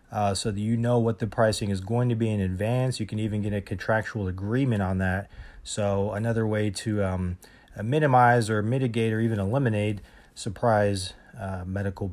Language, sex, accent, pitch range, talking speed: English, male, American, 100-120 Hz, 185 wpm